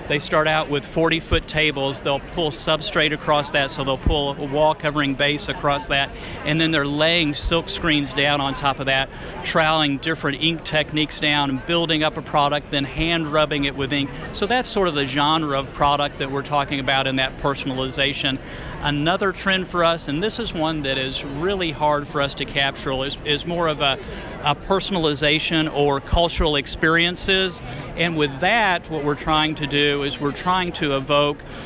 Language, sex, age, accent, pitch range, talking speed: English, male, 50-69, American, 140-160 Hz, 190 wpm